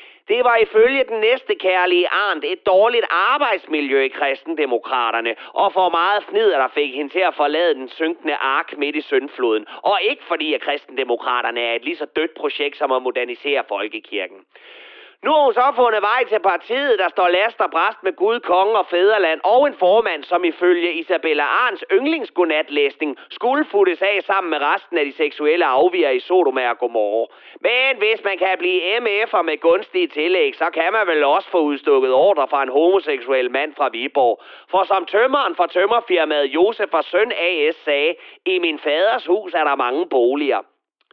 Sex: male